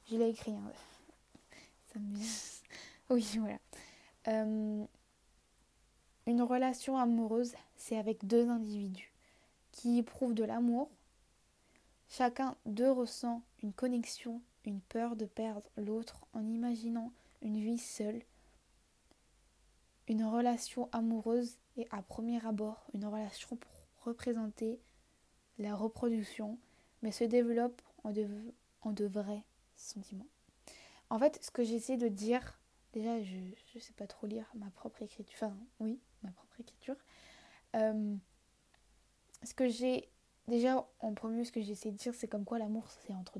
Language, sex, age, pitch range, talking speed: French, female, 10-29, 215-240 Hz, 135 wpm